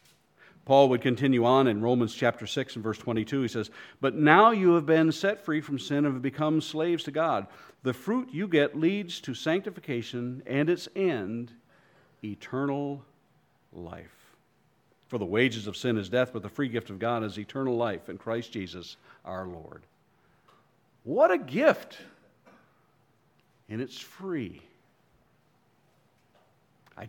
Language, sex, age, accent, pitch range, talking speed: English, male, 50-69, American, 115-155 Hz, 150 wpm